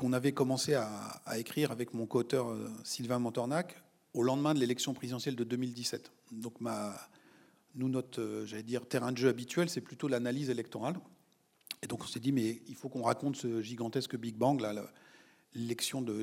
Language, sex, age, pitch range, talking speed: French, male, 40-59, 115-140 Hz, 180 wpm